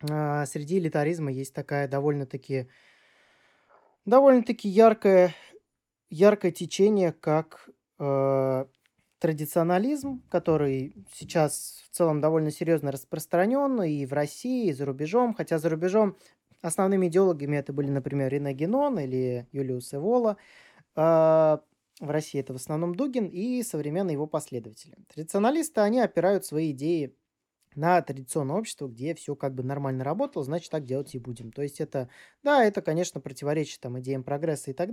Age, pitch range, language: 20-39, 140-185 Hz, Russian